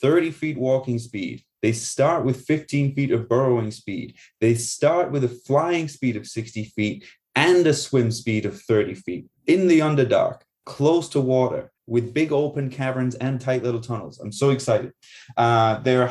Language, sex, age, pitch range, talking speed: English, male, 20-39, 110-140 Hz, 175 wpm